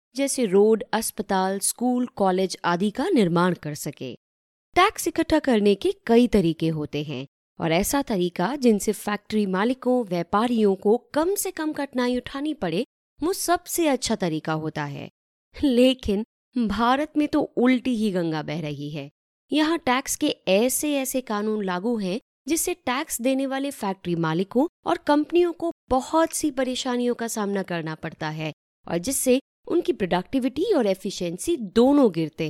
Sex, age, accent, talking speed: female, 20-39, native, 150 wpm